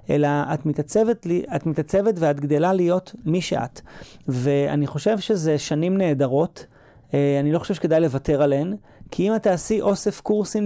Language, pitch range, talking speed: Hebrew, 145-185 Hz, 150 wpm